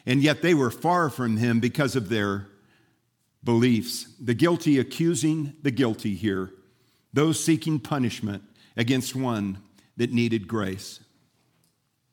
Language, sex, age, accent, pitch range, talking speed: English, male, 50-69, American, 115-150 Hz, 125 wpm